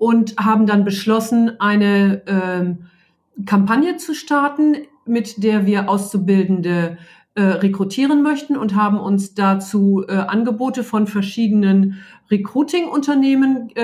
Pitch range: 200-245 Hz